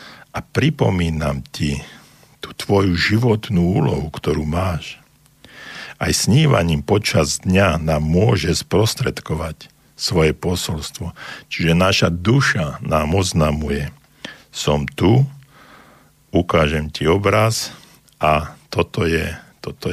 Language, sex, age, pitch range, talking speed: Slovak, male, 60-79, 80-105 Hz, 95 wpm